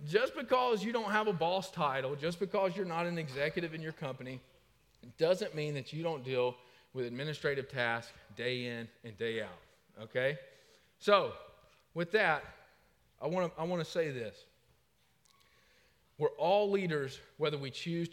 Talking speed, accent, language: 155 wpm, American, English